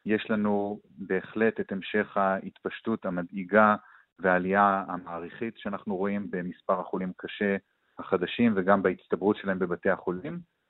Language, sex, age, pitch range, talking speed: Hebrew, male, 30-49, 100-120 Hz, 110 wpm